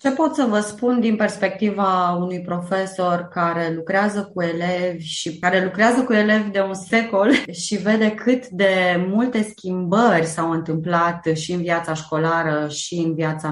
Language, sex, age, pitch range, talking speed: Romanian, female, 20-39, 155-215 Hz, 160 wpm